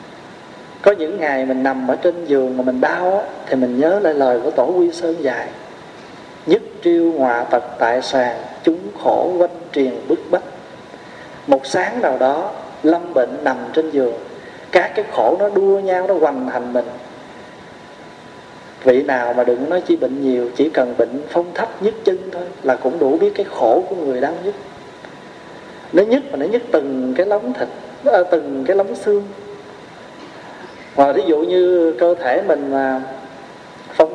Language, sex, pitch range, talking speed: Vietnamese, male, 135-190 Hz, 170 wpm